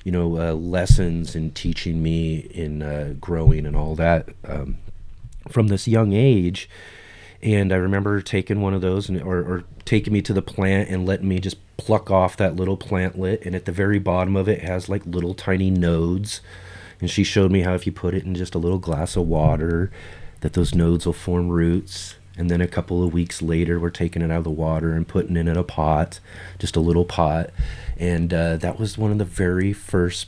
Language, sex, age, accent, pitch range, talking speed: English, male, 30-49, American, 85-95 Hz, 215 wpm